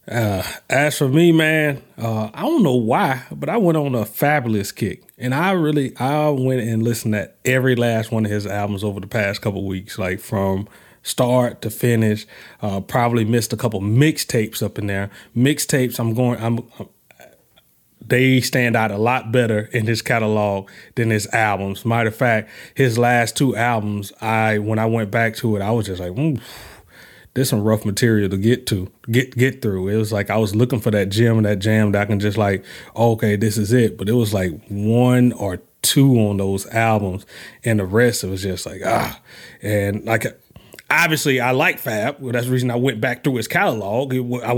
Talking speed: 210 wpm